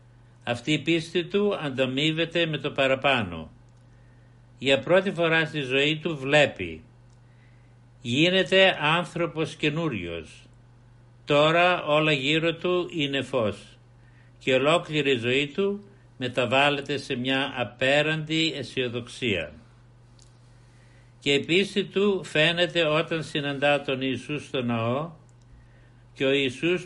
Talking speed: 105 wpm